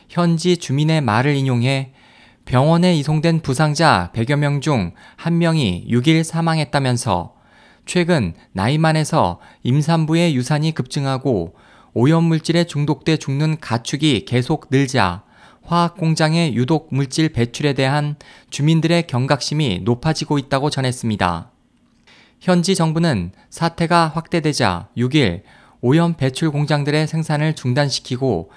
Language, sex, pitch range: Korean, male, 125-165 Hz